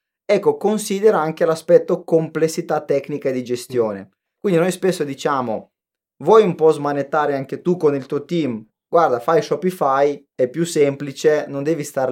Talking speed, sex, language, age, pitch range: 155 wpm, male, Italian, 20-39, 130-175 Hz